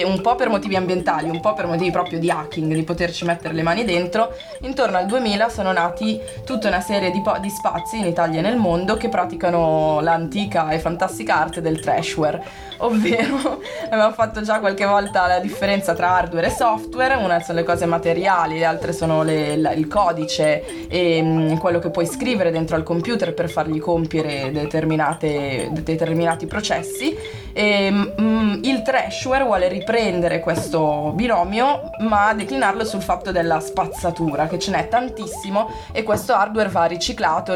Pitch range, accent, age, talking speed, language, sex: 160-200 Hz, native, 20-39, 170 wpm, Italian, female